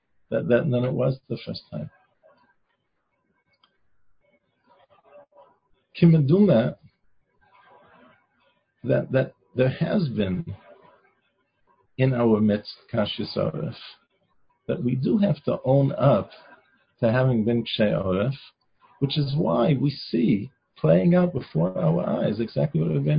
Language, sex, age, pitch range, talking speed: English, male, 50-69, 130-165 Hz, 115 wpm